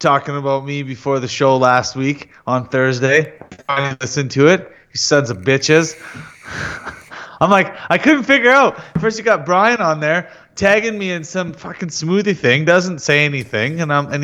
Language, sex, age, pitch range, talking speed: English, male, 30-49, 125-160 Hz, 185 wpm